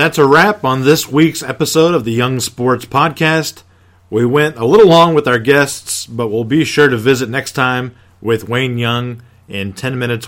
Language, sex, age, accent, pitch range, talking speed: English, male, 40-59, American, 100-145 Hz, 200 wpm